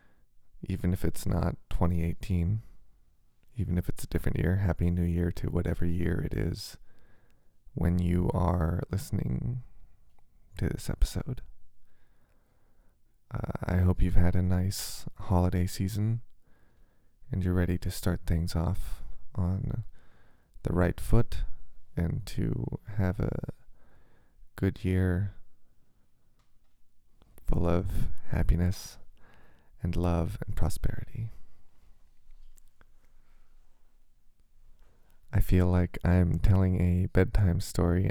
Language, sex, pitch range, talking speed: English, male, 85-100 Hz, 105 wpm